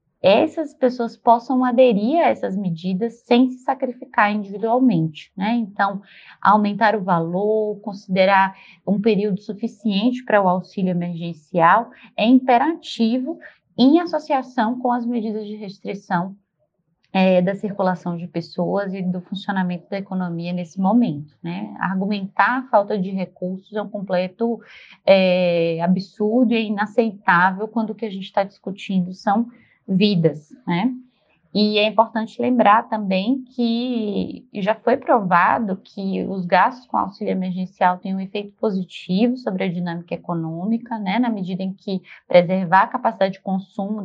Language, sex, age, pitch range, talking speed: Portuguese, female, 20-39, 180-225 Hz, 140 wpm